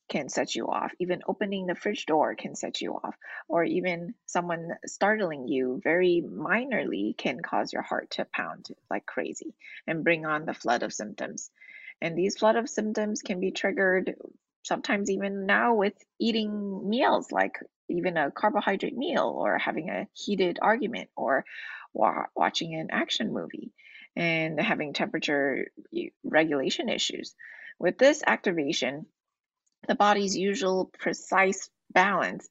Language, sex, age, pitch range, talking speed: English, female, 20-39, 165-215 Hz, 140 wpm